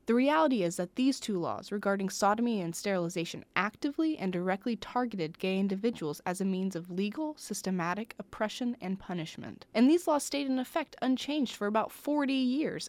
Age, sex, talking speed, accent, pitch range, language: 20-39, female, 170 wpm, American, 180-240 Hz, English